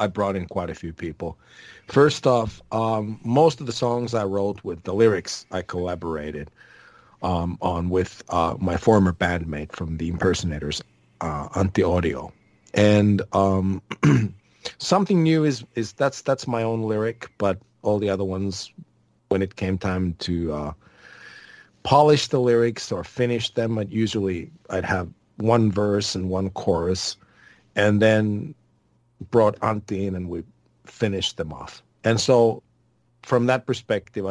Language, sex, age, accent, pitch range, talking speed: English, male, 40-59, American, 95-115 Hz, 150 wpm